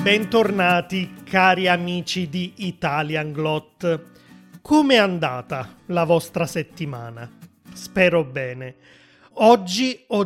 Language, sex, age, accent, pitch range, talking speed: Italian, male, 30-49, native, 160-195 Hz, 95 wpm